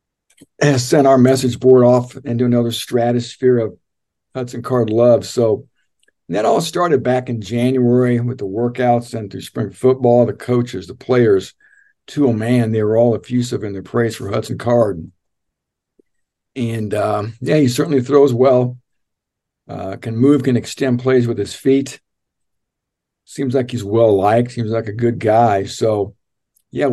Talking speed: 160 wpm